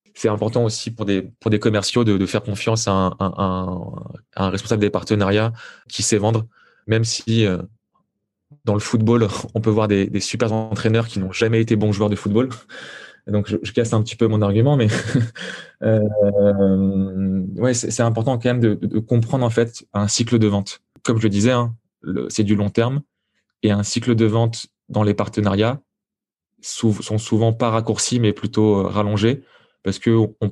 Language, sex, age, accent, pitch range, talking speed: French, male, 20-39, French, 100-115 Hz, 195 wpm